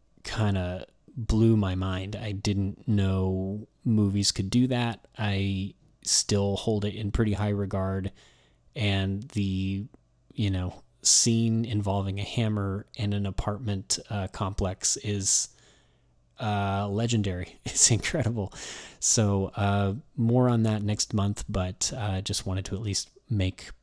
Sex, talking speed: male, 135 wpm